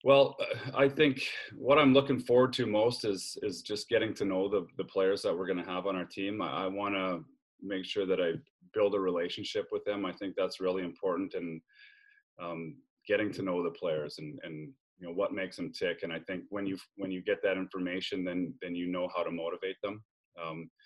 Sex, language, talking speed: male, English, 225 wpm